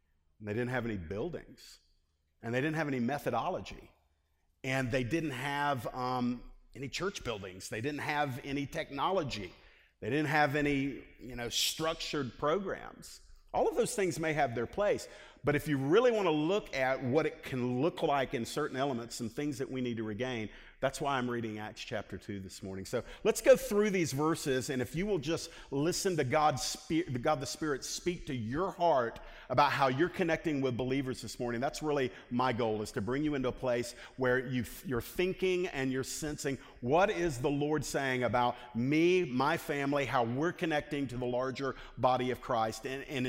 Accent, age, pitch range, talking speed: American, 50-69, 120-155 Hz, 190 wpm